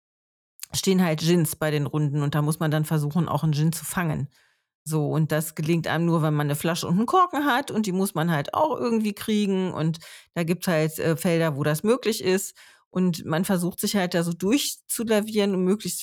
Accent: German